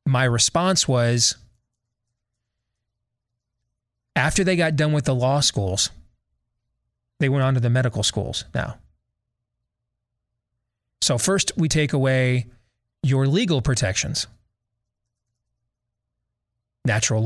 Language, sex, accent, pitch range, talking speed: English, male, American, 115-135 Hz, 95 wpm